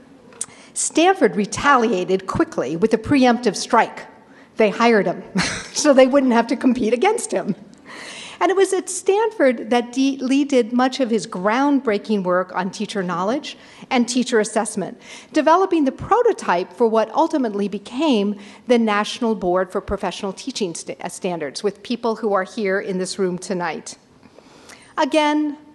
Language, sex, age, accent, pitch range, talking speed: English, female, 50-69, American, 200-260 Hz, 140 wpm